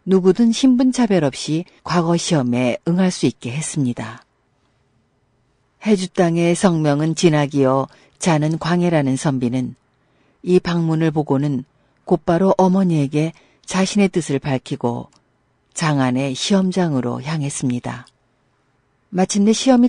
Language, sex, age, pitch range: Korean, female, 50-69, 125-180 Hz